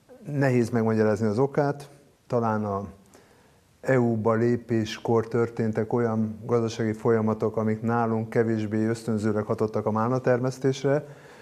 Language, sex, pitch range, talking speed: Hungarian, male, 105-125 Hz, 100 wpm